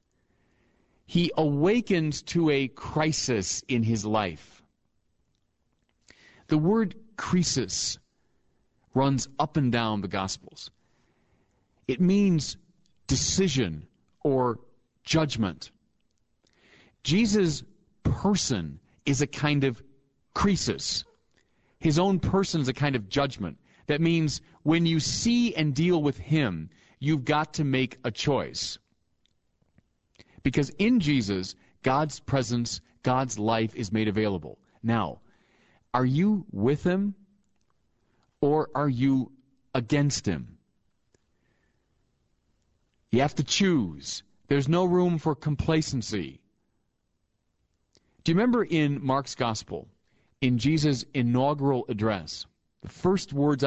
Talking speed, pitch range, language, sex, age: 105 wpm, 115-155 Hz, English, male, 40-59